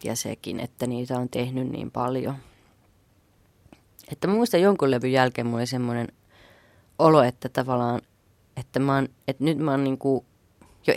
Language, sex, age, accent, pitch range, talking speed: Finnish, female, 20-39, native, 115-145 Hz, 160 wpm